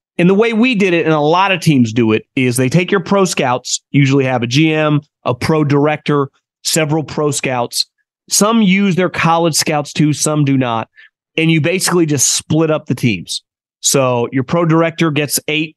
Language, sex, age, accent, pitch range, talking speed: English, male, 30-49, American, 140-170 Hz, 200 wpm